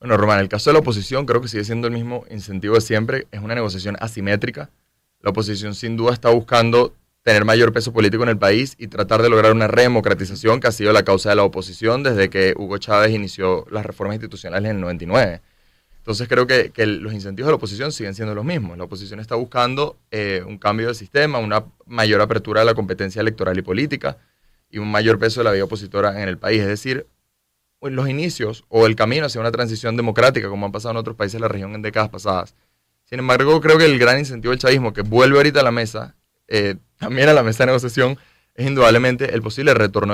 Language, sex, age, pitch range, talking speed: Spanish, male, 20-39, 105-120 Hz, 225 wpm